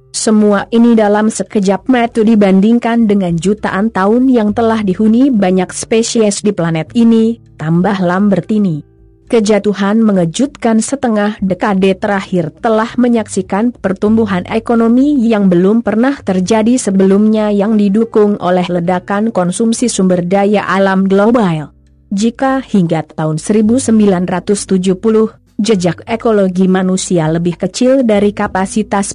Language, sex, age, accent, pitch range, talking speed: Indonesian, female, 30-49, native, 185-230 Hz, 110 wpm